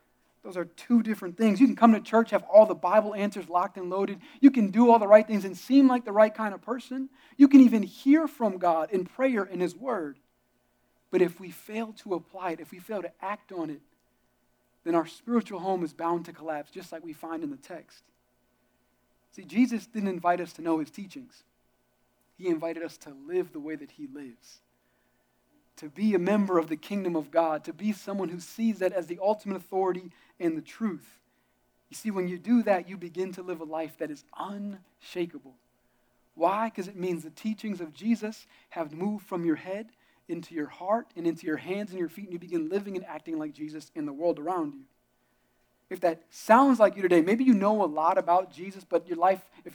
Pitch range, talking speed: 165-215 Hz, 220 wpm